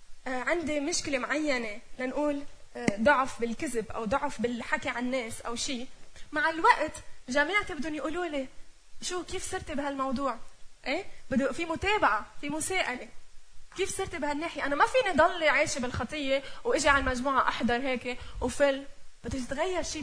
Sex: female